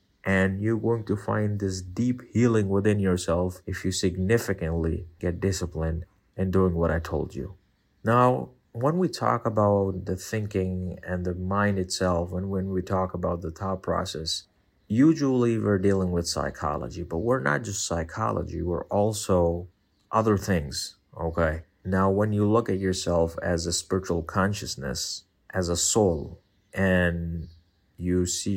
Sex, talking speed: male, 150 wpm